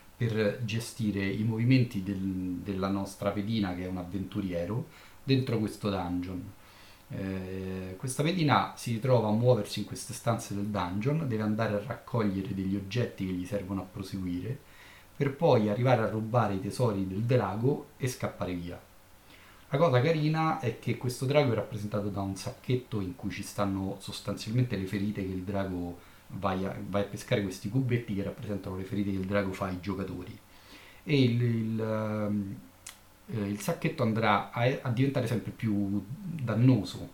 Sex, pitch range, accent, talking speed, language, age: male, 100-125 Hz, native, 160 wpm, Italian, 30-49